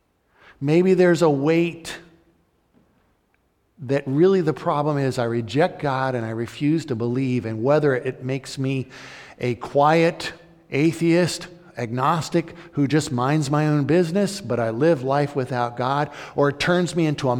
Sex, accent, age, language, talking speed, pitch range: male, American, 50-69, English, 150 wpm, 120-170 Hz